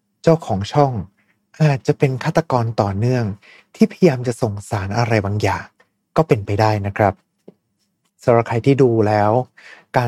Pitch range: 110-155 Hz